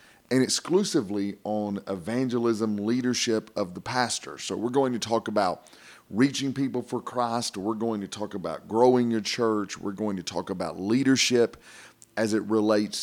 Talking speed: 160 wpm